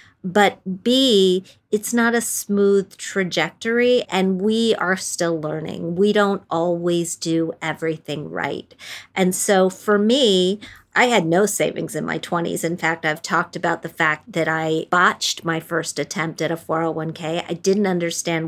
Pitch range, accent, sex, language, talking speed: 170-200 Hz, American, female, English, 155 wpm